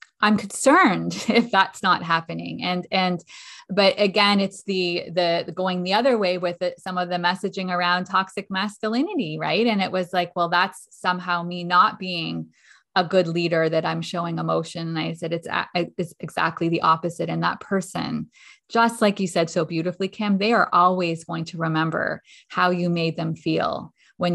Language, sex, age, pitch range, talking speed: English, female, 20-39, 170-210 Hz, 180 wpm